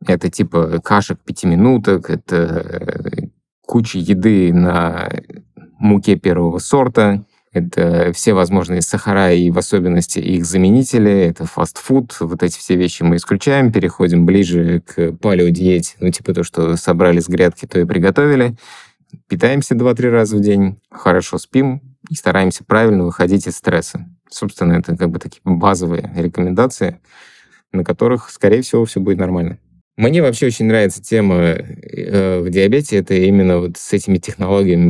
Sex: male